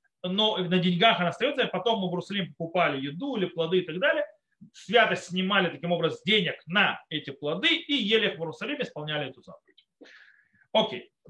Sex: male